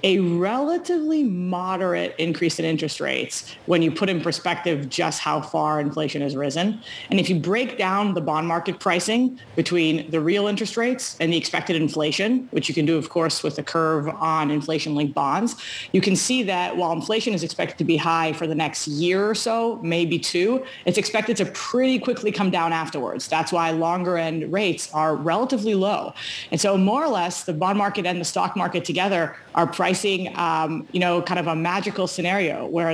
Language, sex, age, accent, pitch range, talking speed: English, female, 30-49, American, 160-200 Hz, 195 wpm